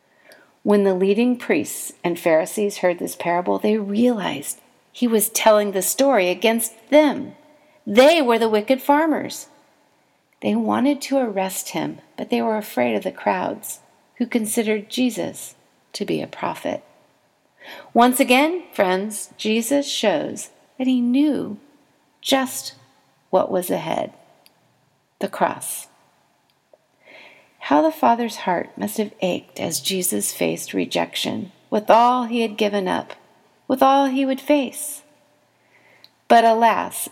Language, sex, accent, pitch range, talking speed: English, female, American, 205-285 Hz, 130 wpm